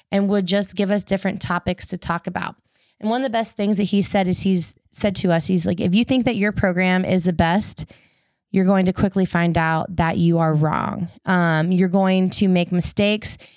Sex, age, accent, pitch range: female, 20-39, American, 180-200 Hz